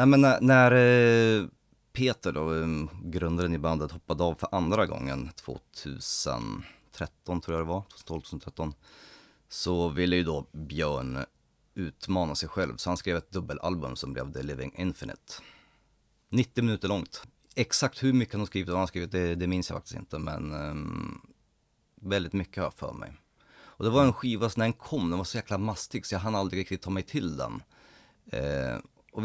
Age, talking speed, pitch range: 30-49, 180 wpm, 80-100 Hz